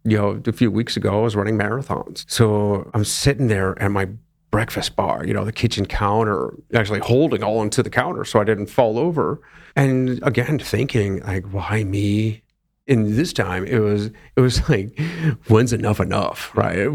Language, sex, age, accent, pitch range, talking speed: English, male, 40-59, American, 105-125 Hz, 185 wpm